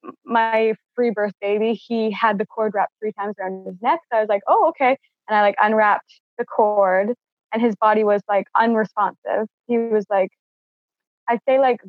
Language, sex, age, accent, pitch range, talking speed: English, female, 20-39, American, 200-230 Hz, 190 wpm